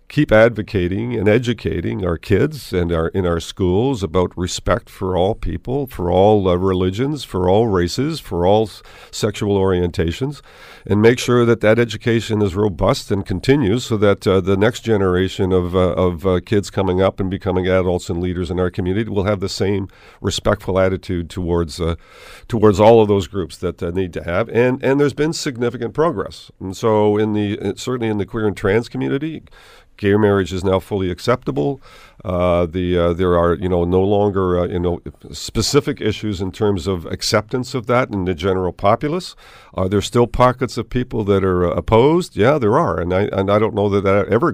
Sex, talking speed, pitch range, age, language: male, 200 wpm, 90-110 Hz, 50-69, English